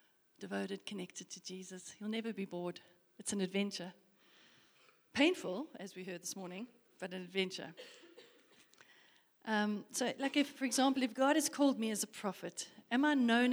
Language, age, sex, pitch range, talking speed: English, 40-59, female, 185-235 Hz, 170 wpm